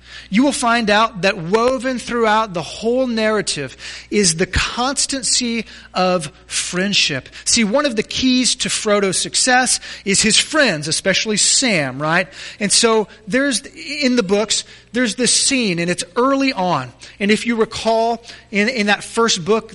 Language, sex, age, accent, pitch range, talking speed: English, male, 30-49, American, 165-230 Hz, 155 wpm